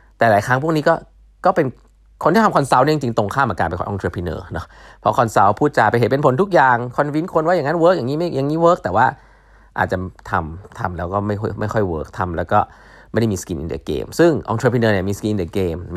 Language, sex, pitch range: Thai, male, 100-150 Hz